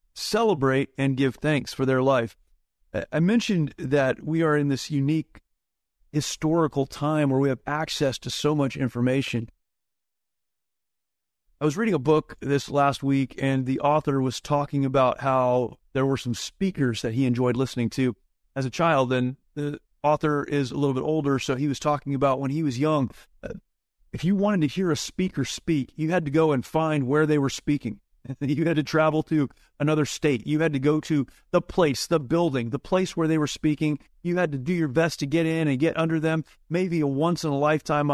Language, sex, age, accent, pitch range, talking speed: English, male, 30-49, American, 135-165 Hz, 200 wpm